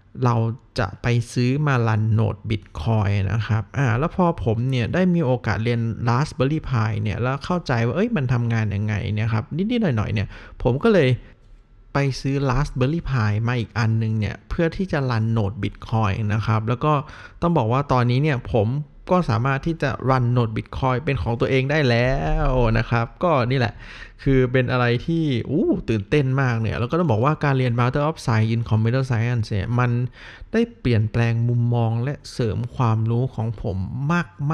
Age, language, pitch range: 20-39, Thai, 110-135 Hz